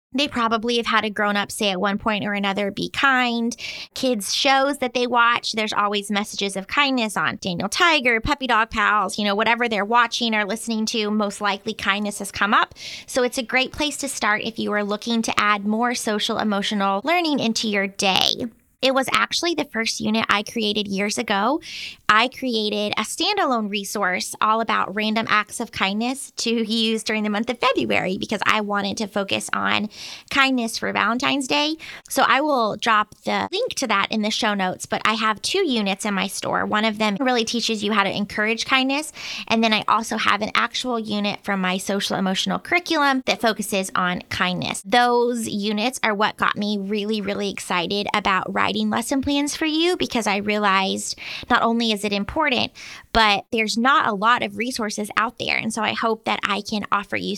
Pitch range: 205-245 Hz